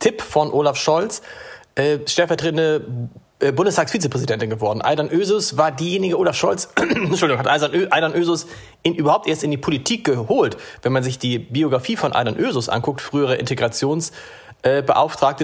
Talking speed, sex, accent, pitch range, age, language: 140 wpm, male, German, 135-170 Hz, 40-59, German